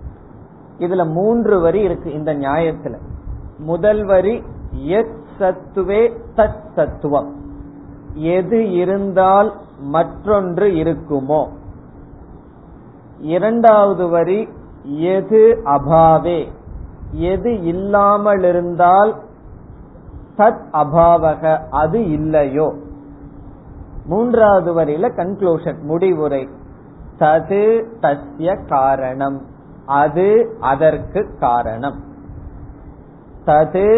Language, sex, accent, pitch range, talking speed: Tamil, male, native, 150-195 Hz, 50 wpm